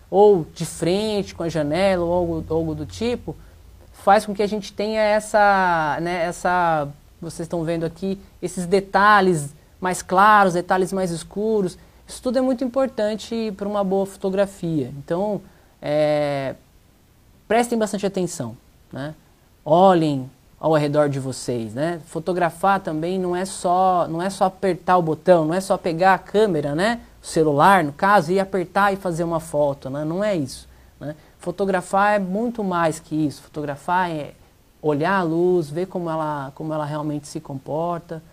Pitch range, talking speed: 160-195 Hz, 155 wpm